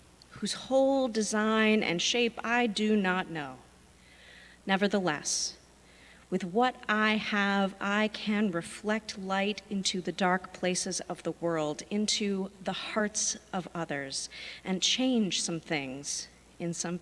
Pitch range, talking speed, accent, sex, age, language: 165-210 Hz, 125 wpm, American, female, 40-59, English